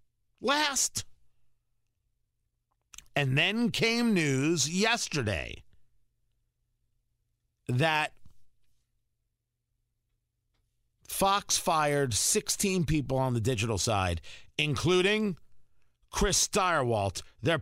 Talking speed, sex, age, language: 65 wpm, male, 50-69, English